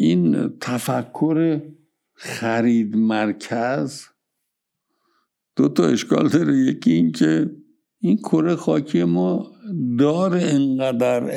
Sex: male